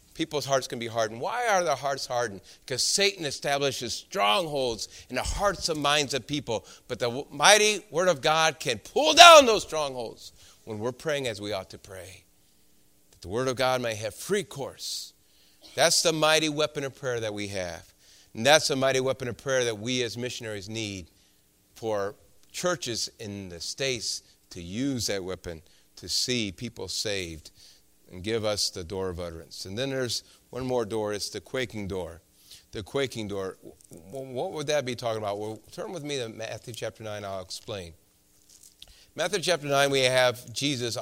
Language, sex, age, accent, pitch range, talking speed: English, male, 40-59, American, 100-135 Hz, 185 wpm